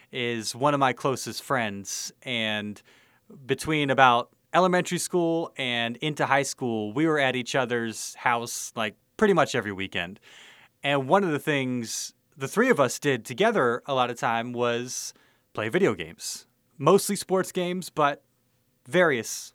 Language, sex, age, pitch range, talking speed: English, male, 30-49, 120-150 Hz, 155 wpm